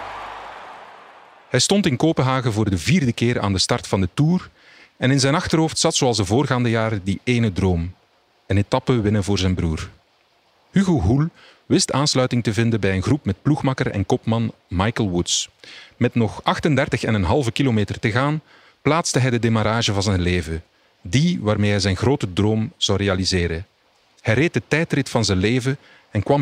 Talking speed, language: 175 wpm, Dutch